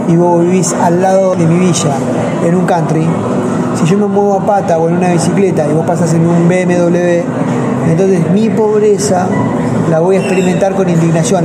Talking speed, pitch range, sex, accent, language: 190 wpm, 170-215 Hz, male, Argentinian, Spanish